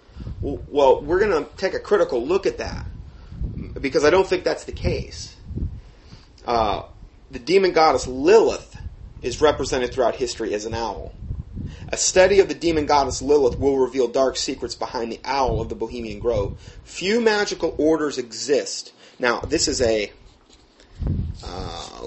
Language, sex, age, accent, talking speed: English, male, 30-49, American, 150 wpm